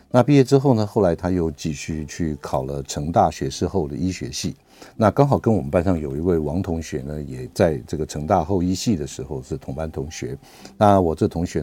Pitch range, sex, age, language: 75-105 Hz, male, 60-79, Chinese